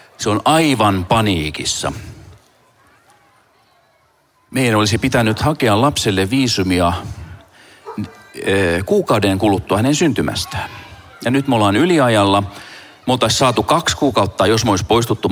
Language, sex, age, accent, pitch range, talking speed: Finnish, male, 40-59, native, 95-125 Hz, 105 wpm